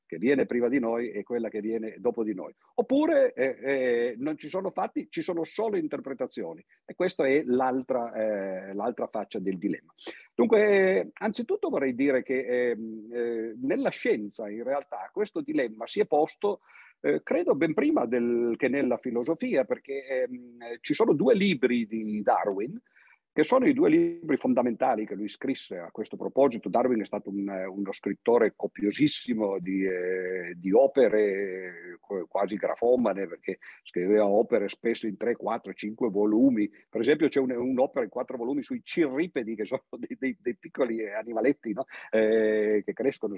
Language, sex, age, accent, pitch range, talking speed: Italian, male, 50-69, native, 110-150 Hz, 165 wpm